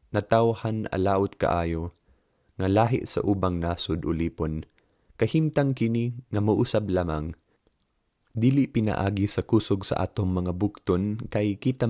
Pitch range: 95-110 Hz